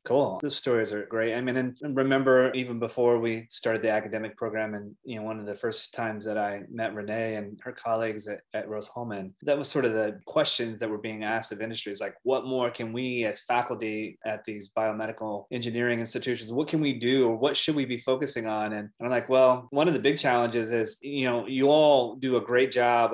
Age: 20-39